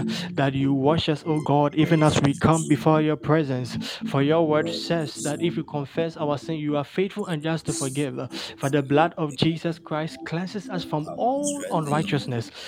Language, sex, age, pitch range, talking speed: English, male, 20-39, 150-170 Hz, 195 wpm